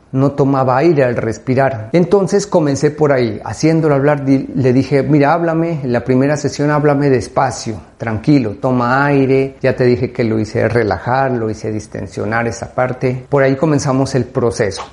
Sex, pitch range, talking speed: male, 125-155 Hz, 165 wpm